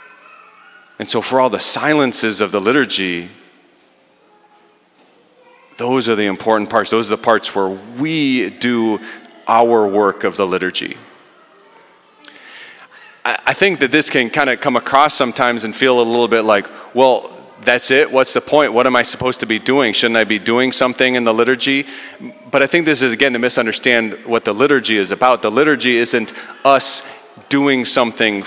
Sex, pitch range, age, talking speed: male, 110-135 Hz, 30-49, 175 wpm